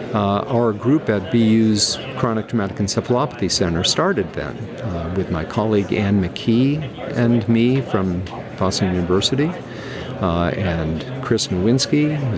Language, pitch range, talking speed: English, 95-125 Hz, 130 wpm